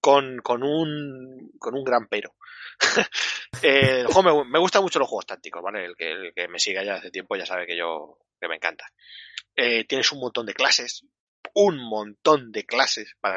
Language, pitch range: Spanish, 110-135 Hz